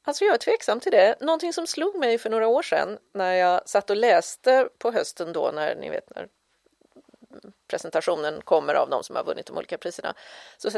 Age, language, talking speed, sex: 30-49, Swedish, 205 wpm, female